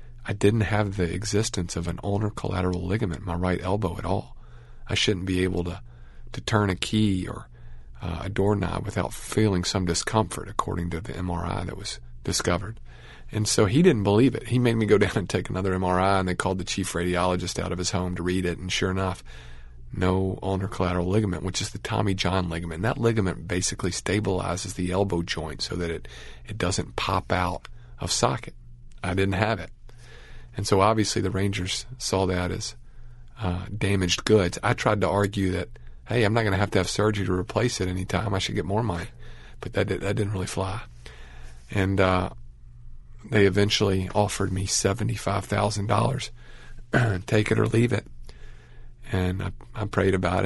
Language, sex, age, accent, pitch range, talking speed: English, male, 50-69, American, 90-105 Hz, 190 wpm